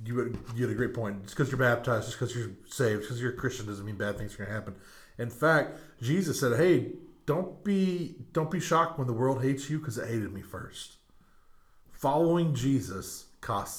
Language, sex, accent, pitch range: English, male, American, 100-130 Hz